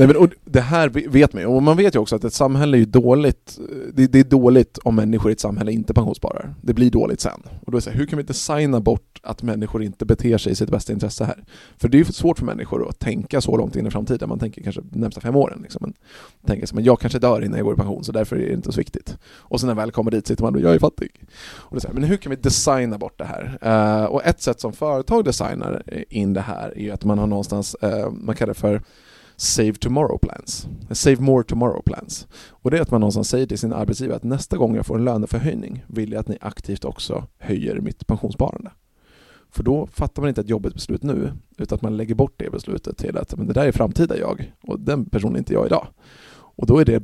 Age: 20-39